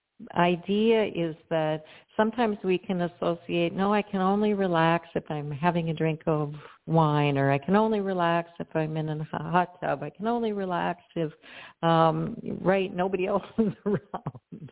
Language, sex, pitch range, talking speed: English, female, 155-190 Hz, 165 wpm